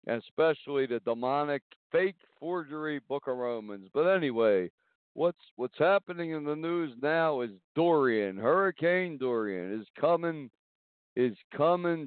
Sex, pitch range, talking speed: male, 120-165 Hz, 125 wpm